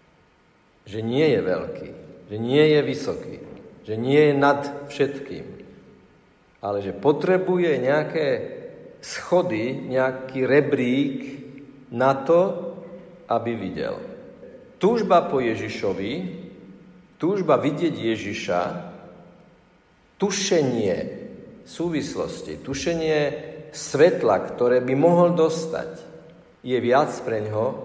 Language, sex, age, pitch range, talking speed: Slovak, male, 50-69, 125-180 Hz, 90 wpm